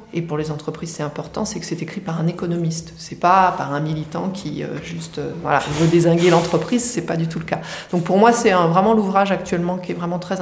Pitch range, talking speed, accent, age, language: 165-200 Hz, 265 wpm, French, 30-49, French